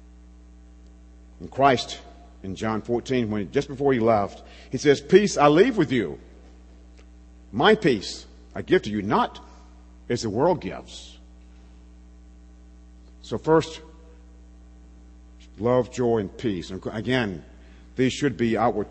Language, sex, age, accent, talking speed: English, male, 50-69, American, 130 wpm